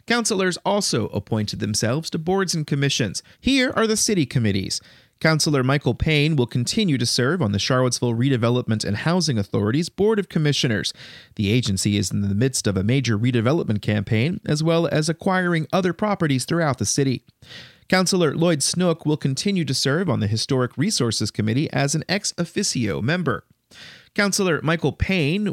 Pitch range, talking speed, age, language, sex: 115-175 Hz, 160 wpm, 30-49, English, male